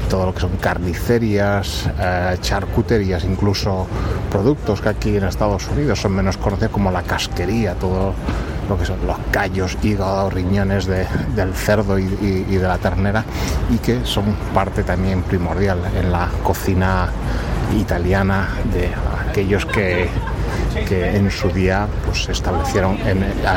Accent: Spanish